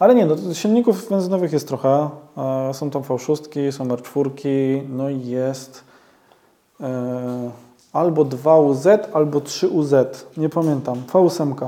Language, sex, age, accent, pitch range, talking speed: Polish, male, 20-39, native, 130-150 Hz, 115 wpm